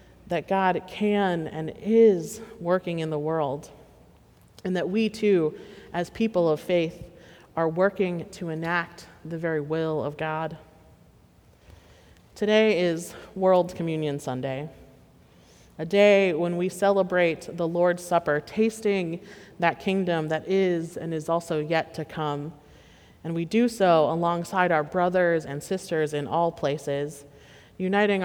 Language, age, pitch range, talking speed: English, 30-49, 150-185 Hz, 135 wpm